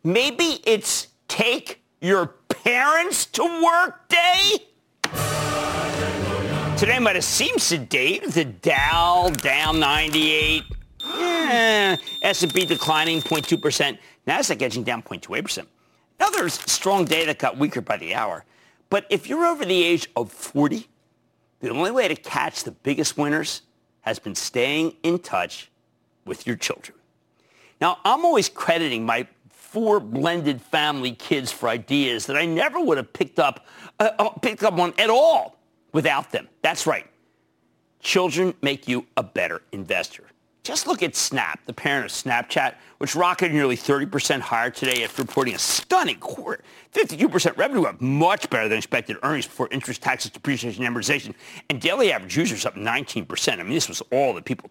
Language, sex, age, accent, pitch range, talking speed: English, male, 50-69, American, 140-220 Hz, 150 wpm